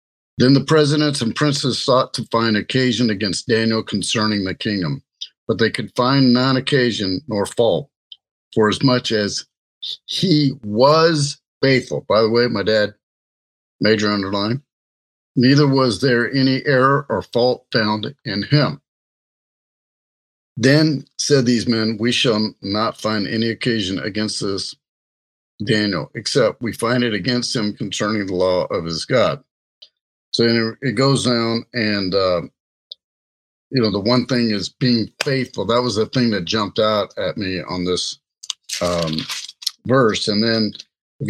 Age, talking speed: 50-69, 145 wpm